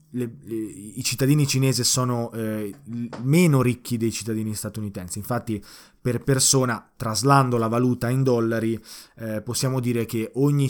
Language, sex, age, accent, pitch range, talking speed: Italian, male, 20-39, native, 105-130 Hz, 140 wpm